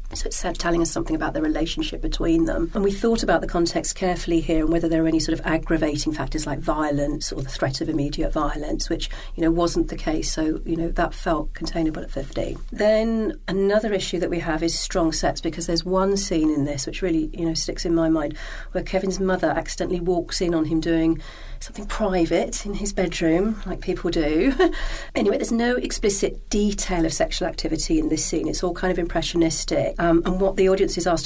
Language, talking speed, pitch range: English, 215 wpm, 160-185 Hz